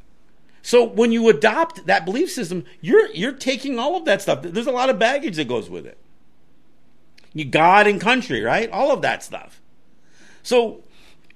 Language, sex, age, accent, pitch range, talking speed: English, male, 50-69, American, 145-230 Hz, 175 wpm